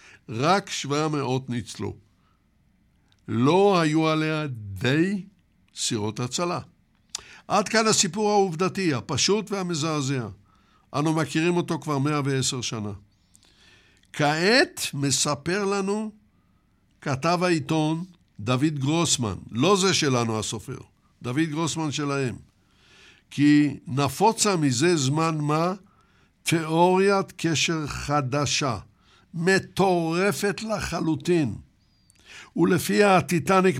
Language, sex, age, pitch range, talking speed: Hebrew, male, 60-79, 120-175 Hz, 85 wpm